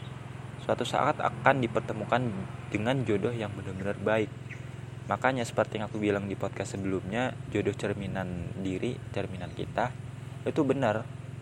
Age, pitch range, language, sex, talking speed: 20-39, 105-130 Hz, Indonesian, male, 125 wpm